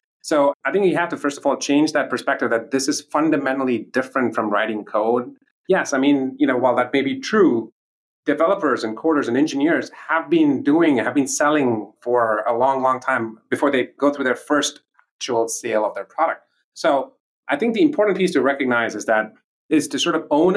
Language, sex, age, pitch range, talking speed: English, male, 30-49, 120-160 Hz, 210 wpm